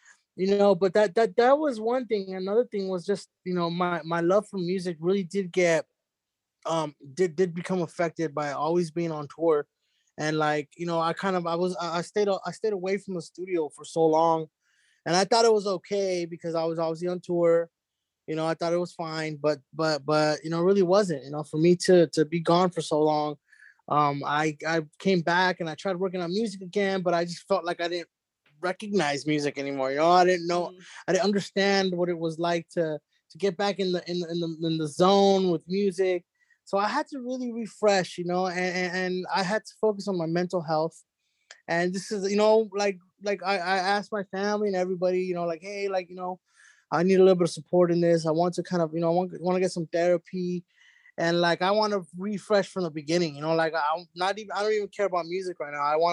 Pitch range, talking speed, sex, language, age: 165-195 Hz, 240 wpm, male, English, 20-39